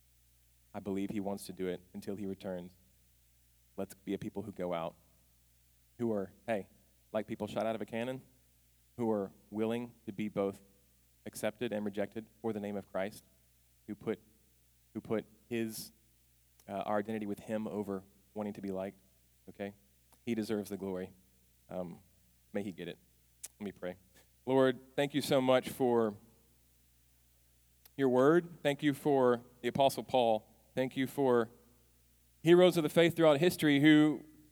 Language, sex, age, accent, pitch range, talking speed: English, male, 30-49, American, 90-125 Hz, 160 wpm